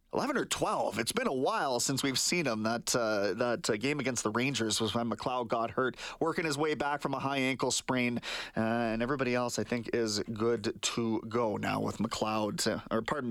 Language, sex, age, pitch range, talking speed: English, male, 30-49, 125-195 Hz, 215 wpm